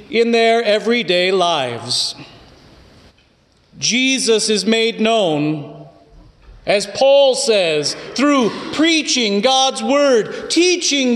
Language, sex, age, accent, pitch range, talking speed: English, male, 40-59, American, 170-265 Hz, 85 wpm